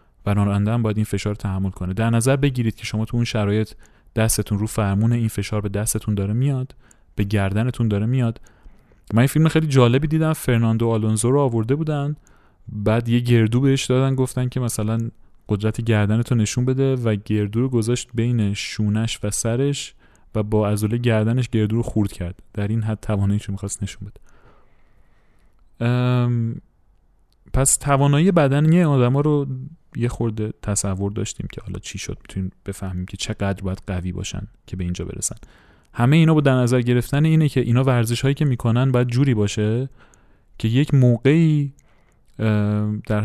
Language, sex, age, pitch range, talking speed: Persian, male, 30-49, 105-125 Hz, 160 wpm